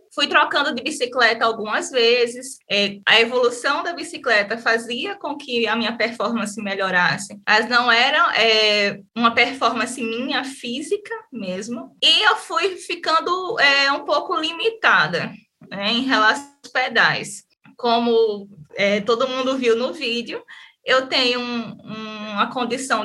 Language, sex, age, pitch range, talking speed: Portuguese, female, 20-39, 225-290 Hz, 120 wpm